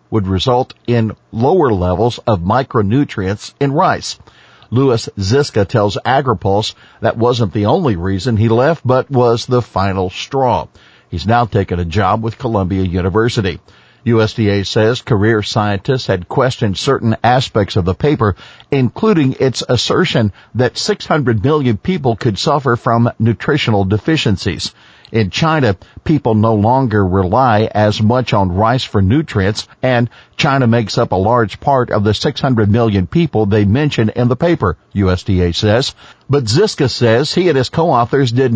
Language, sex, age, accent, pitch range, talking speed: English, male, 50-69, American, 105-135 Hz, 150 wpm